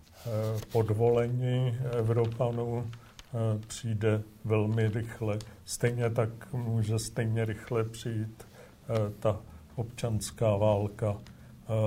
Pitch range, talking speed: 110-120 Hz, 70 wpm